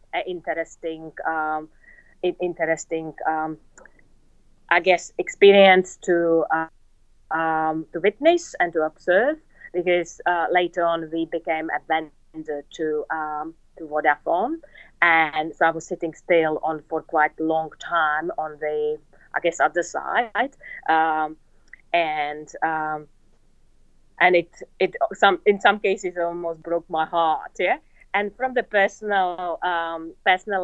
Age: 30-49